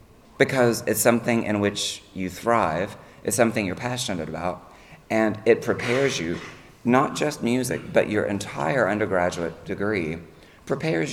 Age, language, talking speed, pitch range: 30-49, English, 135 wpm, 90-120 Hz